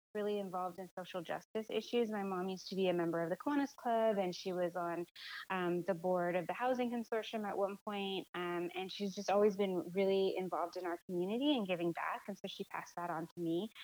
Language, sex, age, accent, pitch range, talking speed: English, female, 20-39, American, 180-210 Hz, 230 wpm